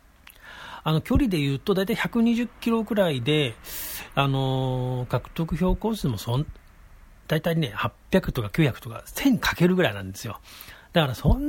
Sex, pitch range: male, 110-155 Hz